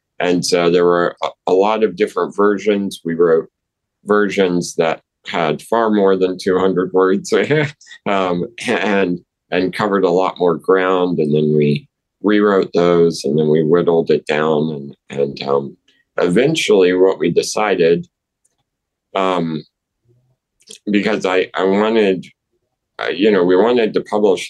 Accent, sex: American, male